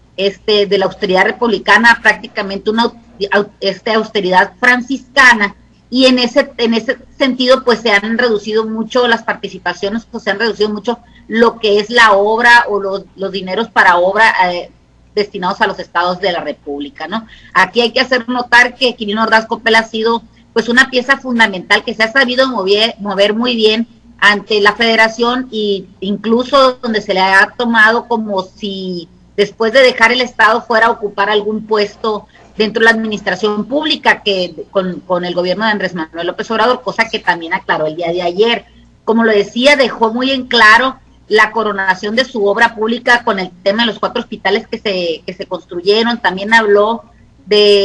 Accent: Mexican